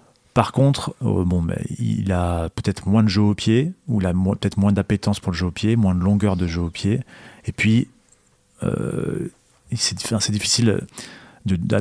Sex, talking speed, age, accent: male, 205 wpm, 40-59, French